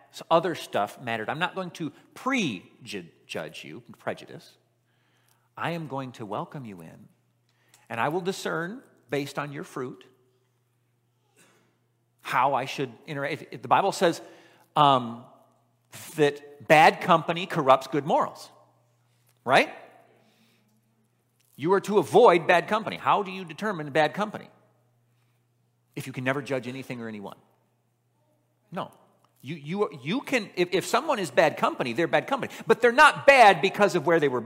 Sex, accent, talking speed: male, American, 145 wpm